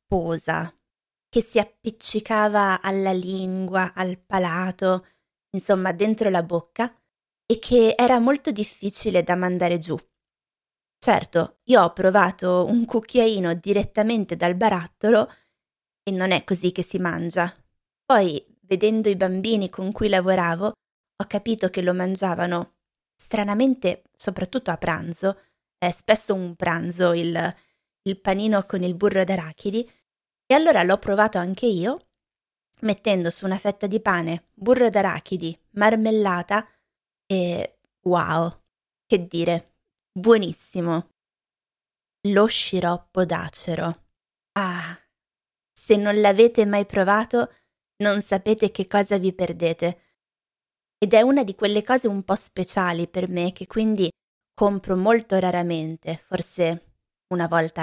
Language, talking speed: Italian, 120 wpm